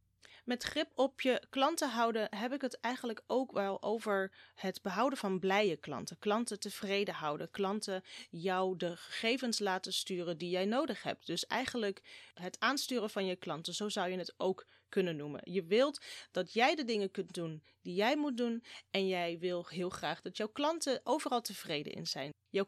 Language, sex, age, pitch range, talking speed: Dutch, female, 30-49, 190-260 Hz, 185 wpm